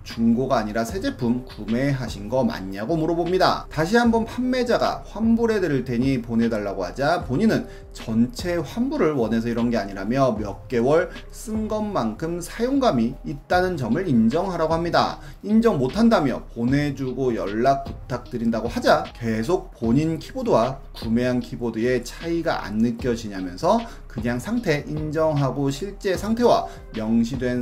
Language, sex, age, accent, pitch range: Korean, male, 30-49, native, 115-180 Hz